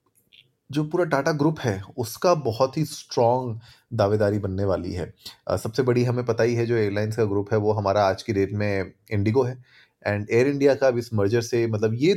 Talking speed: 205 wpm